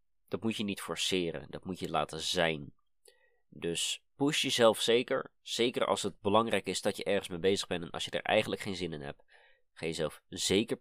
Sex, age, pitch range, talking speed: male, 20-39, 80-105 Hz, 205 wpm